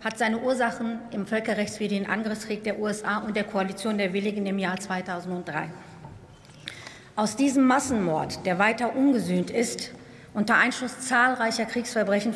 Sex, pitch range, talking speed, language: female, 205-260 Hz, 130 wpm, German